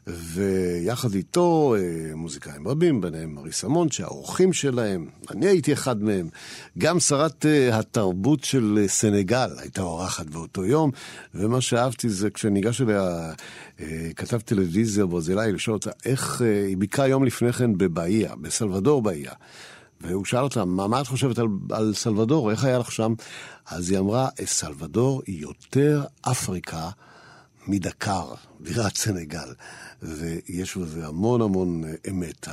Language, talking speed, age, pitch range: Hebrew, 130 wpm, 60-79, 95-135 Hz